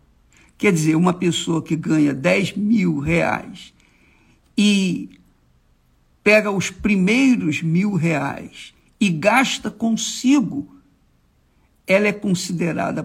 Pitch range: 165-225 Hz